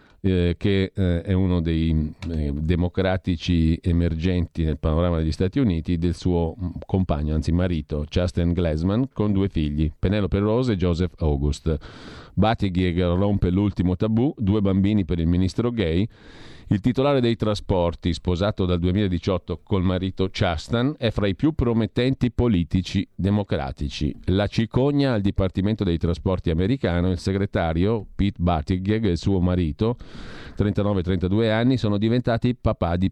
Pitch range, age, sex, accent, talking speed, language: 85-110 Hz, 50-69, male, native, 140 wpm, Italian